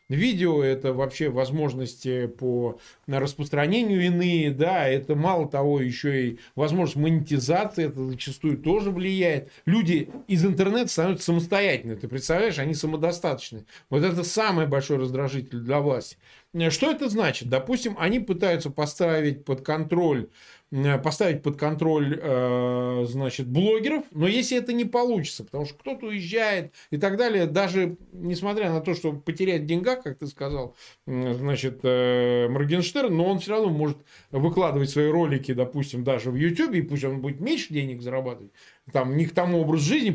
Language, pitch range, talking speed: Russian, 135-185 Hz, 145 wpm